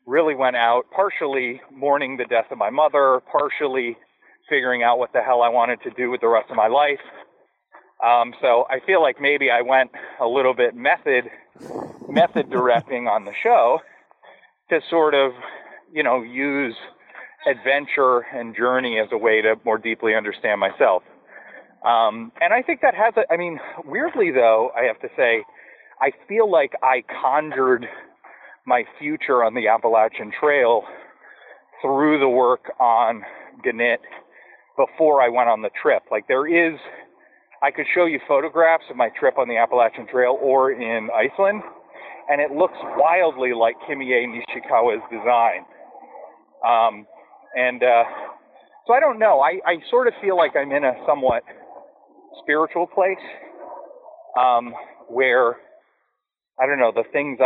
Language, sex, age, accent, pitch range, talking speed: English, male, 30-49, American, 120-165 Hz, 155 wpm